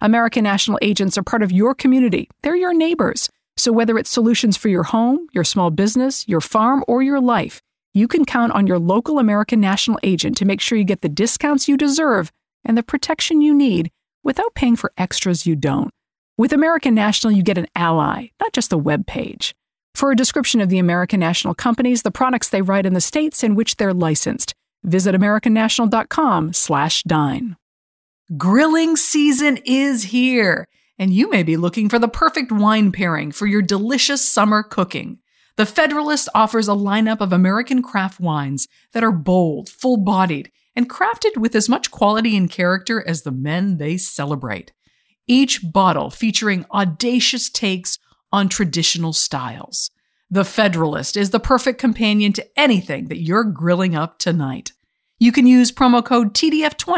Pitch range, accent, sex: 185-250 Hz, American, female